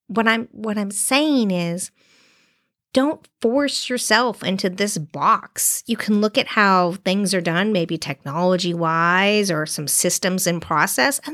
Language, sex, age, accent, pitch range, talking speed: English, female, 40-59, American, 180-235 Hz, 150 wpm